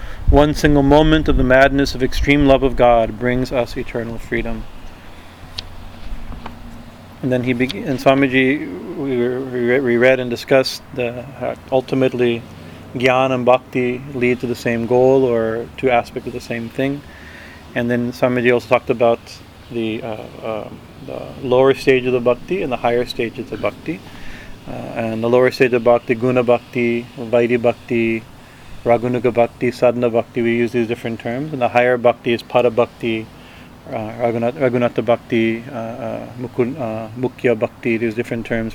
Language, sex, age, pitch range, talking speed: English, male, 30-49, 115-130 Hz, 165 wpm